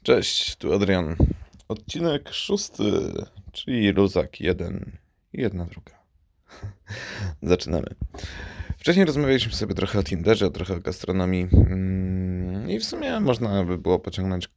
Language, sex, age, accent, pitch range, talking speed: Polish, male, 20-39, native, 95-105 Hz, 115 wpm